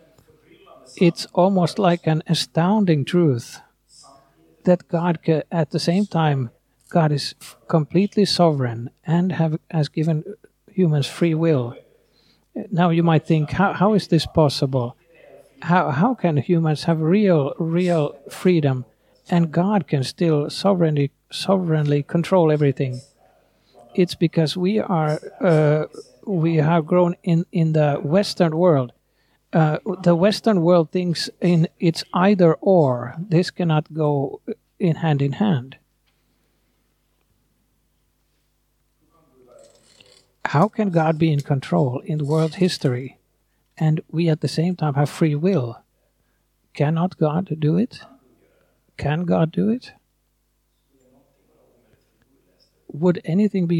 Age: 50-69